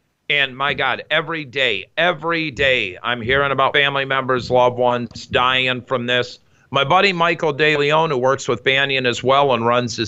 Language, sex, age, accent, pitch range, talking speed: English, male, 50-69, American, 125-155 Hz, 180 wpm